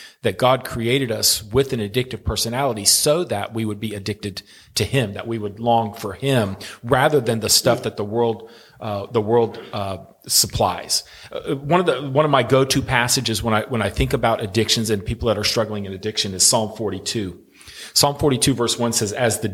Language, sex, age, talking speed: English, male, 40-59, 215 wpm